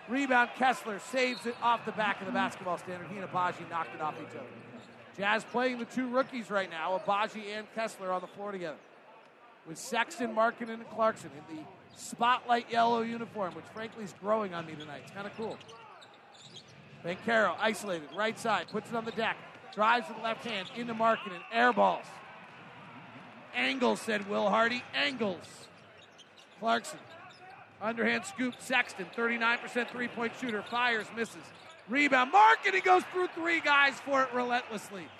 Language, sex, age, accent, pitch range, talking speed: English, male, 40-59, American, 195-240 Hz, 165 wpm